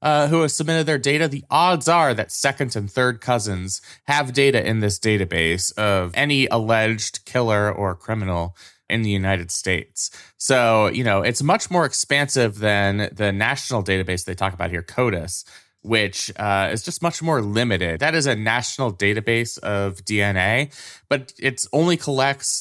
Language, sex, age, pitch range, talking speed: English, male, 20-39, 95-120 Hz, 165 wpm